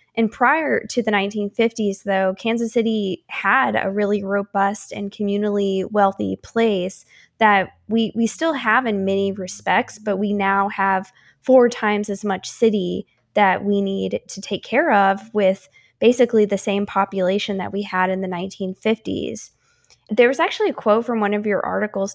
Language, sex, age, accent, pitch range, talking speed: English, female, 20-39, American, 195-225 Hz, 165 wpm